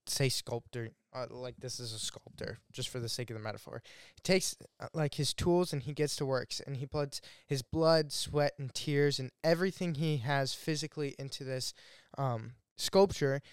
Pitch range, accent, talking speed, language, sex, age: 130-150 Hz, American, 190 wpm, English, male, 10-29